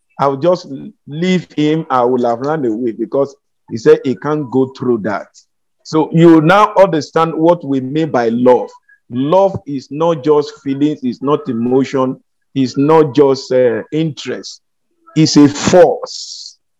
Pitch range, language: 130-165 Hz, English